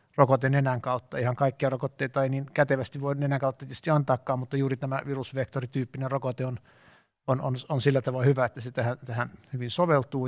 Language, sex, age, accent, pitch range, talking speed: Finnish, male, 60-79, native, 130-145 Hz, 185 wpm